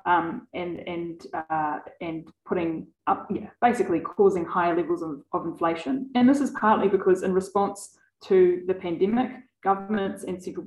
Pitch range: 175-230 Hz